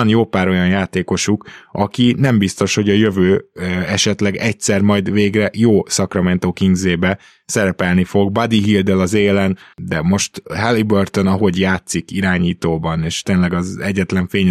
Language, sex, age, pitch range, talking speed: Hungarian, male, 20-39, 95-105 Hz, 145 wpm